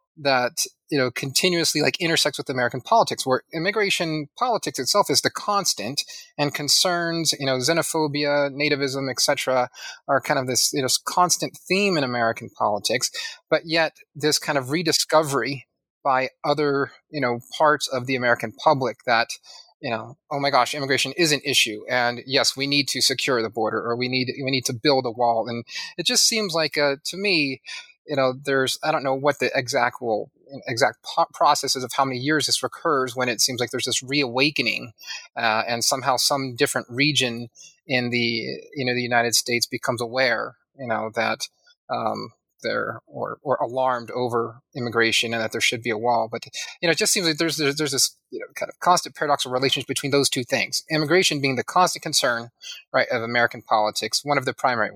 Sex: male